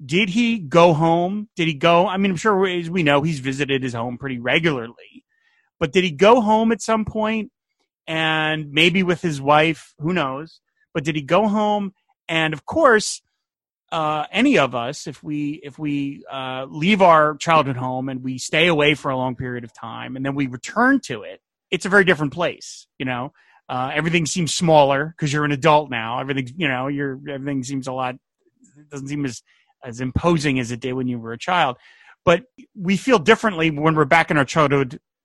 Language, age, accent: English, 30-49, American